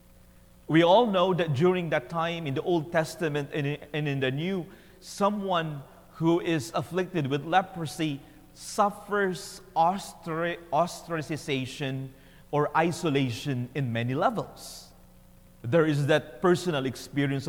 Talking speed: 115 wpm